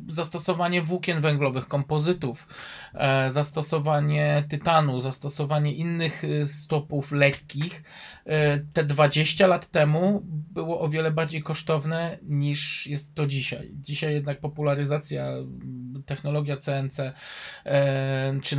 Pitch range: 145-170 Hz